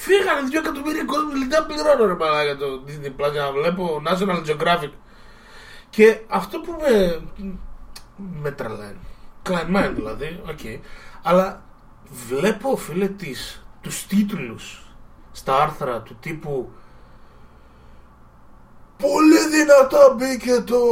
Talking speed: 105 wpm